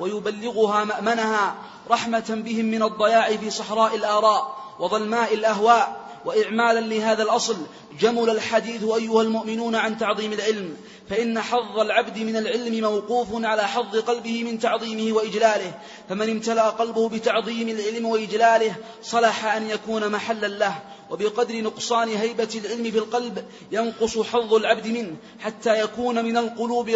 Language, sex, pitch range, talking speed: Arabic, male, 215-230 Hz, 130 wpm